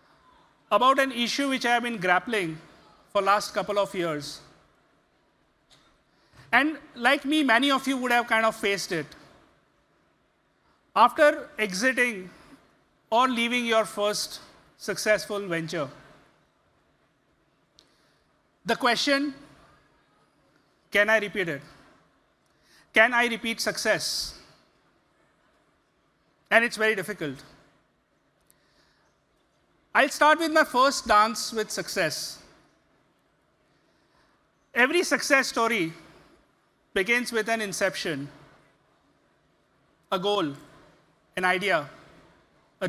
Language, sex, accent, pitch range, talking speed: English, male, Indian, 190-245 Hz, 95 wpm